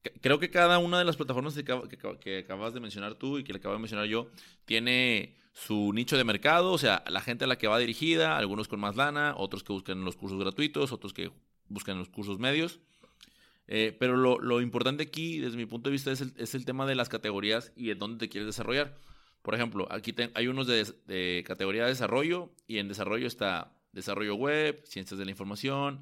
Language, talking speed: Spanish, 215 wpm